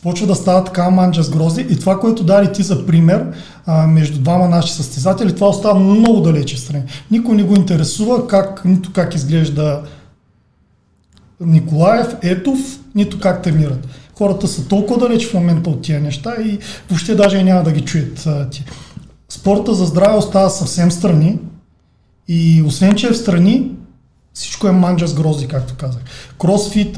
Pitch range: 160-200 Hz